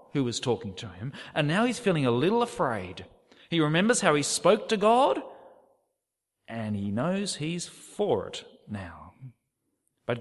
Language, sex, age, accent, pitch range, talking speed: English, male, 40-59, Australian, 105-160 Hz, 160 wpm